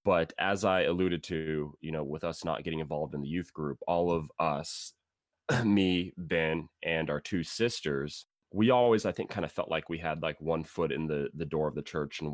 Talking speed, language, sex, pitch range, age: 225 wpm, English, male, 75-90 Hz, 20-39